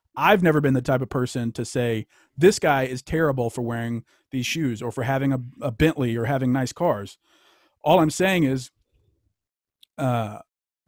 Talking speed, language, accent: 175 wpm, English, American